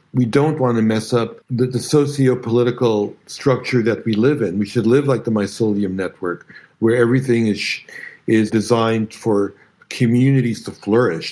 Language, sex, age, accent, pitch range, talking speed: English, male, 60-79, American, 110-130 Hz, 160 wpm